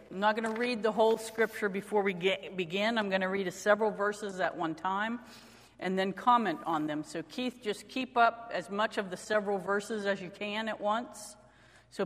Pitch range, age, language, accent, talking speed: 185-240 Hz, 50-69, English, American, 210 wpm